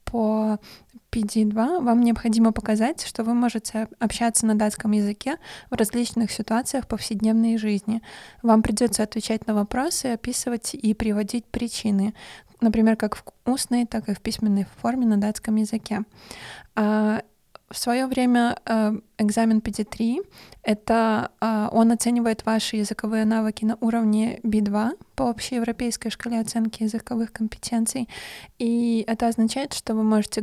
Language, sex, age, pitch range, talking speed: Russian, female, 20-39, 215-235 Hz, 130 wpm